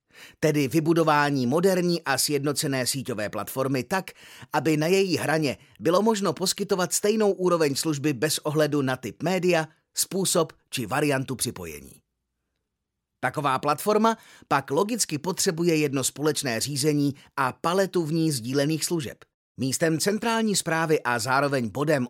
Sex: male